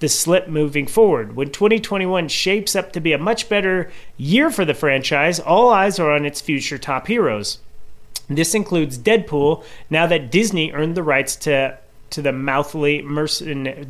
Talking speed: 160 wpm